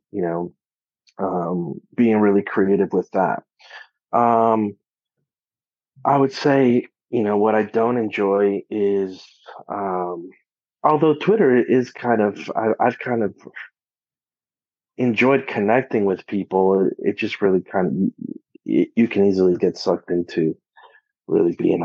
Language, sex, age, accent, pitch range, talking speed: English, male, 30-49, American, 95-115 Hz, 130 wpm